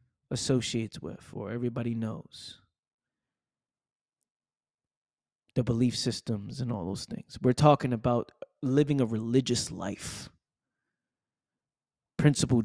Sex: male